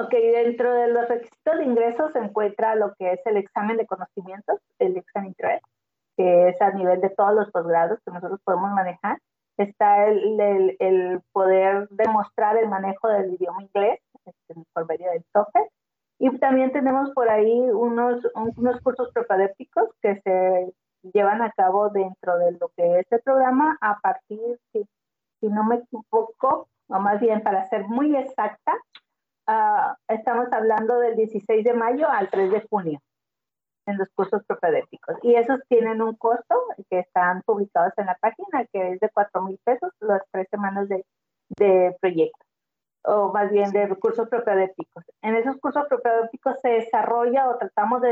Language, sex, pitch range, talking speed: Spanish, female, 195-250 Hz, 170 wpm